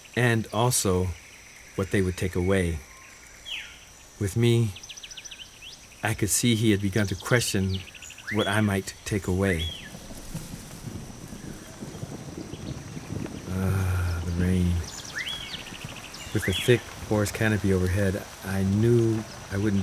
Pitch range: 95-115 Hz